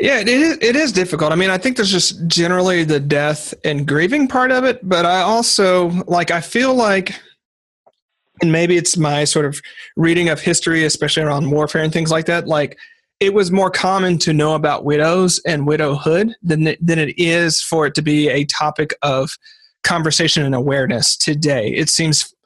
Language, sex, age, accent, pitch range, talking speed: English, male, 30-49, American, 145-180 Hz, 185 wpm